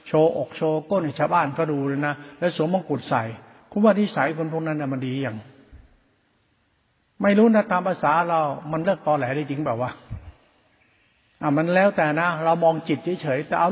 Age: 70-89